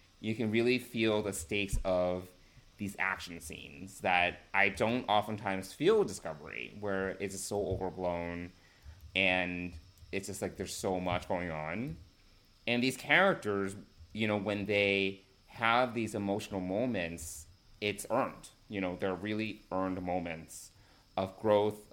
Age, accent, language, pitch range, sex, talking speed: 30-49, American, English, 90-110 Hz, male, 140 wpm